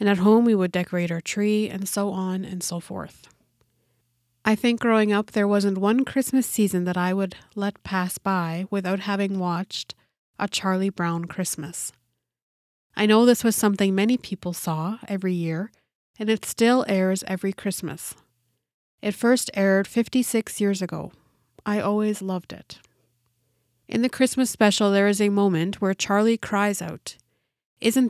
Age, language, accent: 30-49, English, American